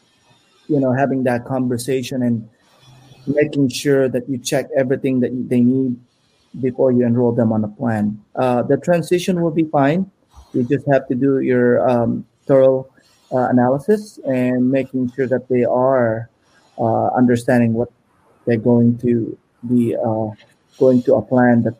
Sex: male